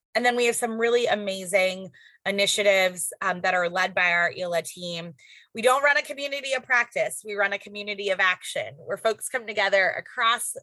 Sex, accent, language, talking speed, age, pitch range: female, American, English, 190 wpm, 20-39, 180-220 Hz